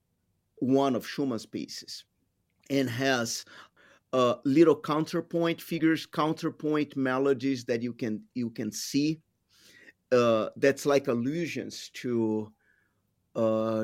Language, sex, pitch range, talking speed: English, male, 115-155 Hz, 105 wpm